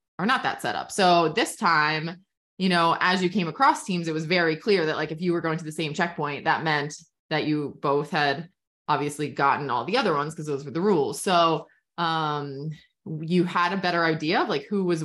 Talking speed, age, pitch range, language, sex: 225 wpm, 20-39, 155-200 Hz, English, female